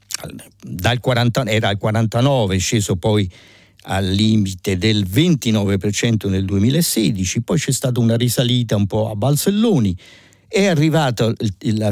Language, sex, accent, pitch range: Italian, male, native, 100-130 Hz